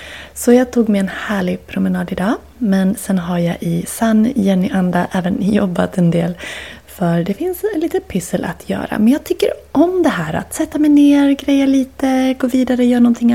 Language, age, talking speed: Swedish, 30-49, 195 wpm